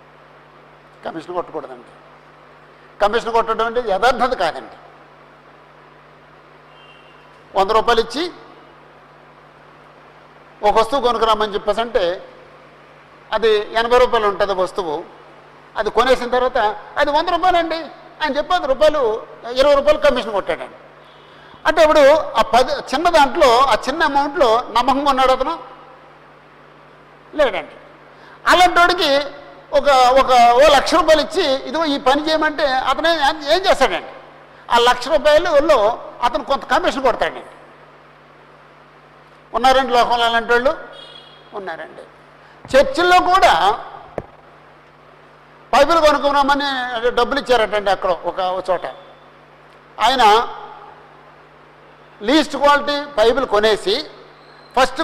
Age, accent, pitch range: 60-79, native, 235-310 Hz